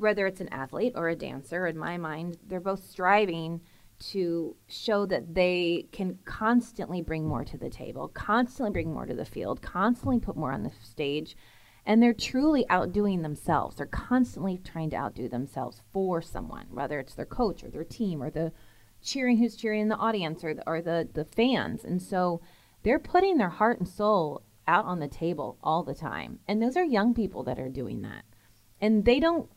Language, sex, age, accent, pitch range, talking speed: English, female, 30-49, American, 160-205 Hz, 195 wpm